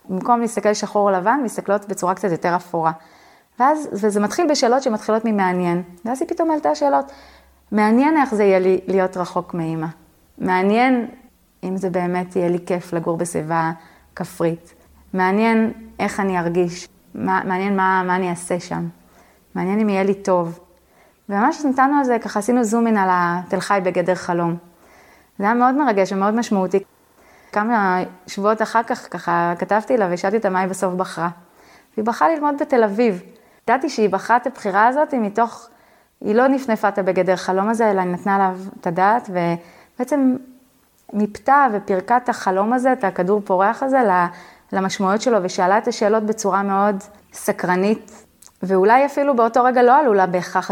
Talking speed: 160 wpm